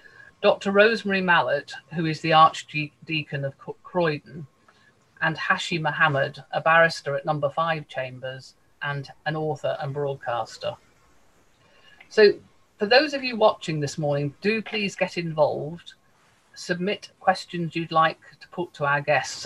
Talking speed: 135 wpm